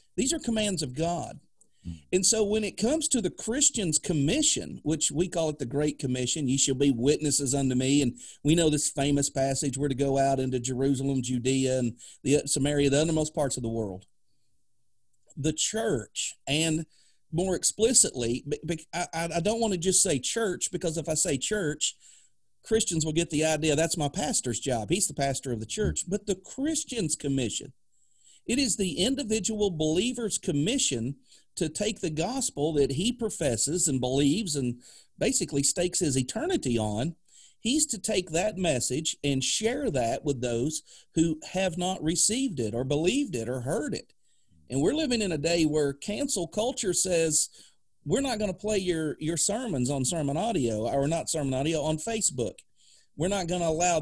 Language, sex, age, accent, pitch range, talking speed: English, male, 40-59, American, 140-190 Hz, 175 wpm